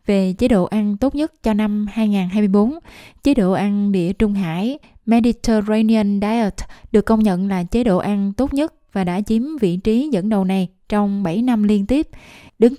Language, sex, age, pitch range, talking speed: Vietnamese, female, 20-39, 195-230 Hz, 190 wpm